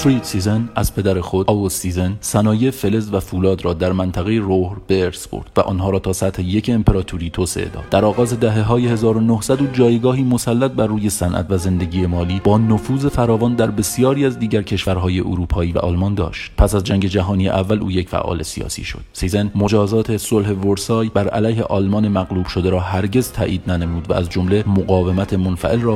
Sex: male